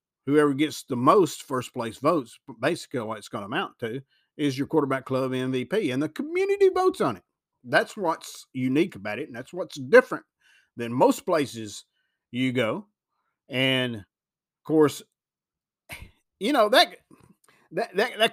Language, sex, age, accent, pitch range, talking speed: English, male, 50-69, American, 125-165 Hz, 155 wpm